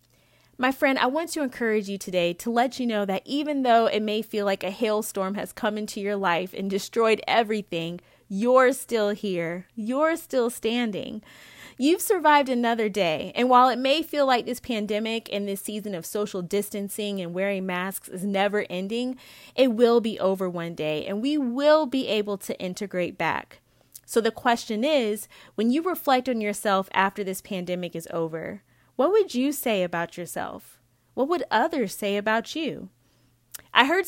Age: 20-39